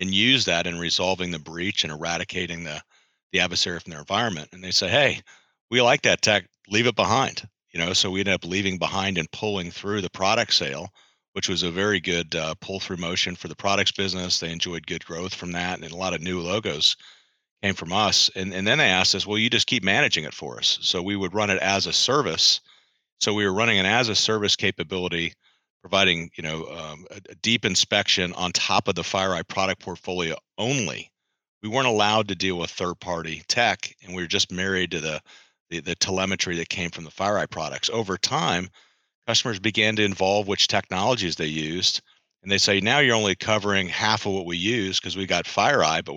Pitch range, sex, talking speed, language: 85-100 Hz, male, 215 wpm, English